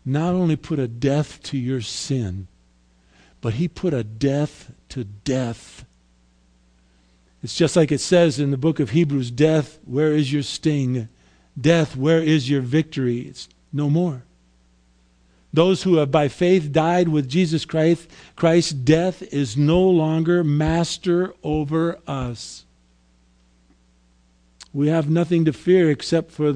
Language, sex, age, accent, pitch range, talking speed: English, male, 50-69, American, 115-180 Hz, 140 wpm